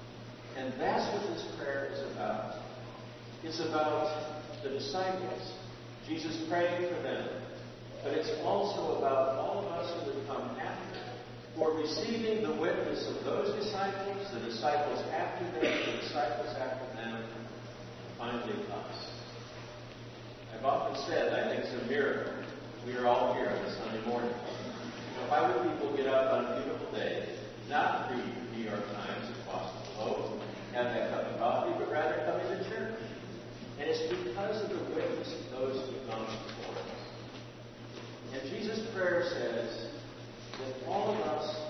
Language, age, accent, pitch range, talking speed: English, 50-69, American, 120-150 Hz, 155 wpm